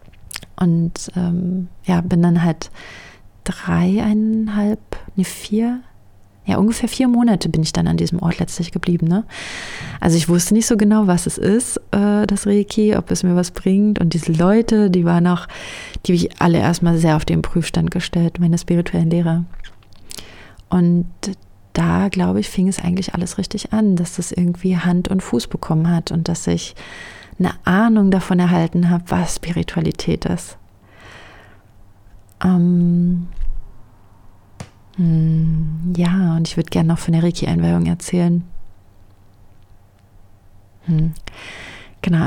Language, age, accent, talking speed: German, 30-49, German, 140 wpm